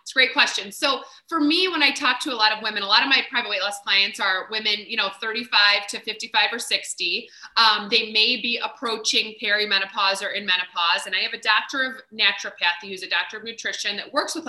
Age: 30-49